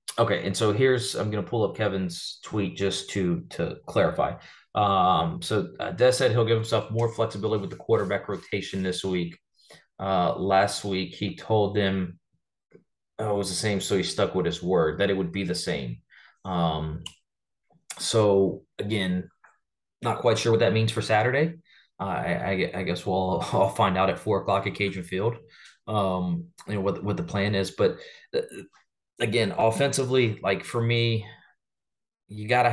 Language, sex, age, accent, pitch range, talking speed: English, male, 30-49, American, 95-115 Hz, 175 wpm